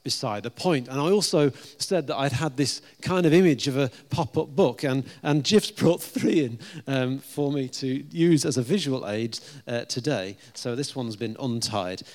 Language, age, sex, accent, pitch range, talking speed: English, 40-59, male, British, 130-170 Hz, 200 wpm